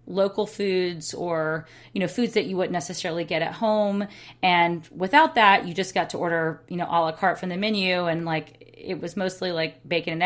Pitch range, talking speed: 160-190 Hz, 215 wpm